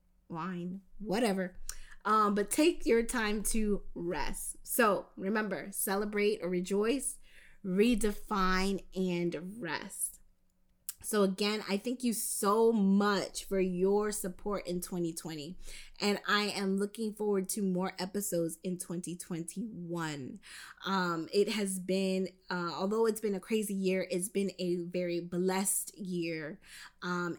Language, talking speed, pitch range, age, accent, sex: English, 125 wpm, 175-205 Hz, 20-39, American, female